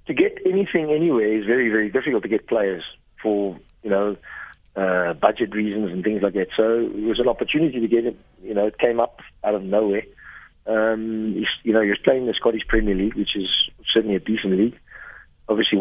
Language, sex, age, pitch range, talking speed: English, male, 40-59, 110-130 Hz, 210 wpm